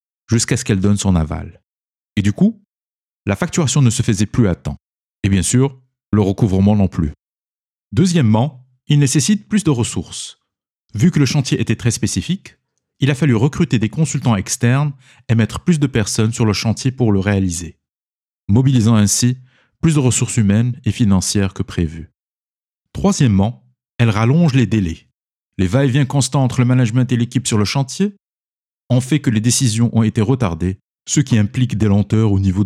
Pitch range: 100-130 Hz